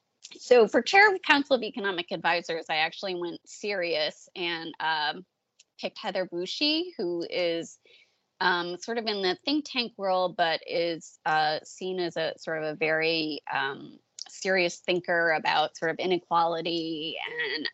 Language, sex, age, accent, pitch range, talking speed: English, female, 20-39, American, 165-225 Hz, 155 wpm